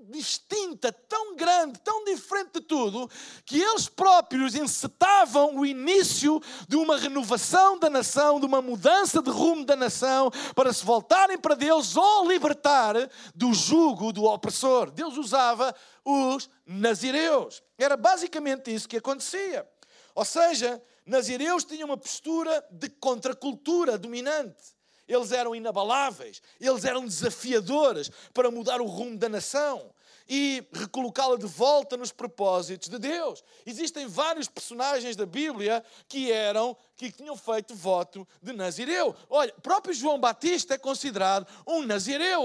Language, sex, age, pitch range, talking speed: Portuguese, male, 50-69, 245-320 Hz, 135 wpm